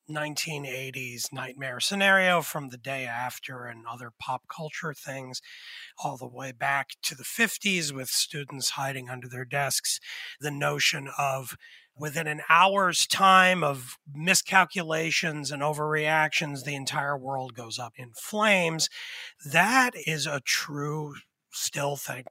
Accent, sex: American, male